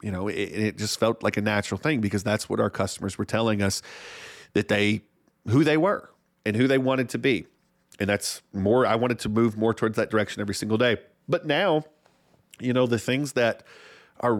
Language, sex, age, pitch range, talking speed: English, male, 40-59, 100-115 Hz, 215 wpm